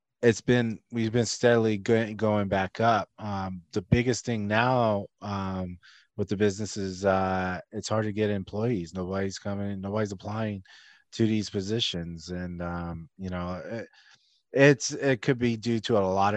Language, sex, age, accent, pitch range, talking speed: English, male, 20-39, American, 90-110 Hz, 160 wpm